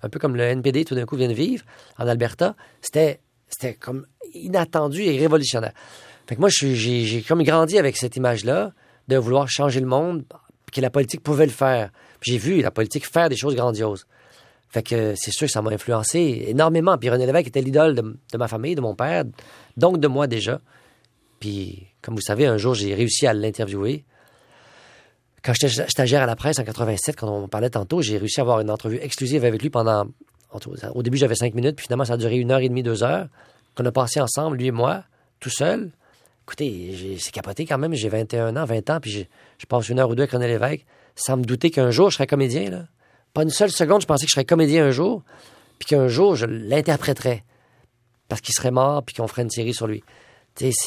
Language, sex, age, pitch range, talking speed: French, male, 40-59, 115-145 Hz, 225 wpm